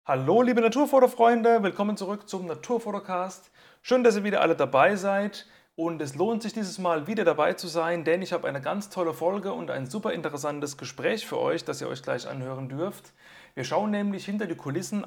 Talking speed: 200 wpm